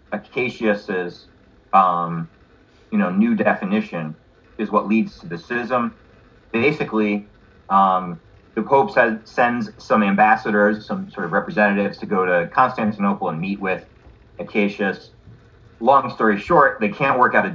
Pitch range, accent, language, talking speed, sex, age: 95-115 Hz, American, English, 135 wpm, male, 30-49